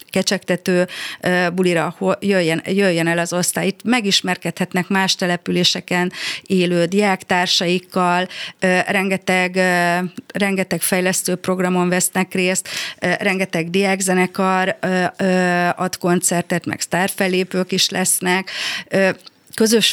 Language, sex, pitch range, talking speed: Hungarian, female, 175-195 Hz, 85 wpm